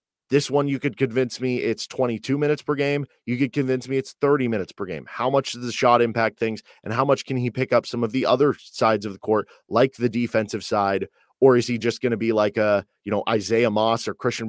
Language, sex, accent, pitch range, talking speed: English, male, American, 105-125 Hz, 255 wpm